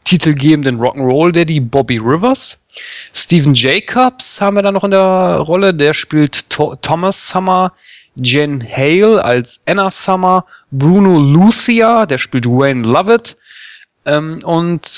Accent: German